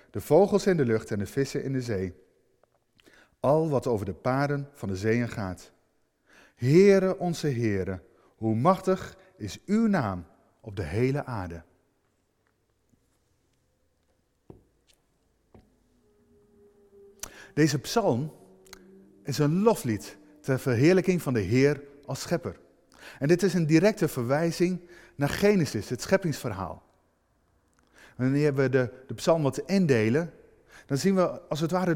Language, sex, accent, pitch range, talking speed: Dutch, male, Dutch, 115-160 Hz, 125 wpm